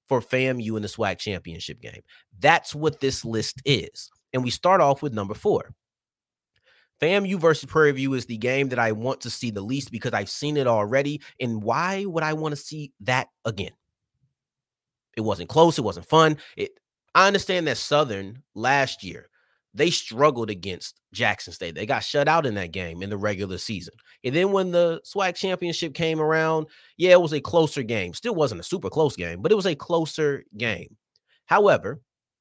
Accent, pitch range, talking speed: American, 110-160 Hz, 195 wpm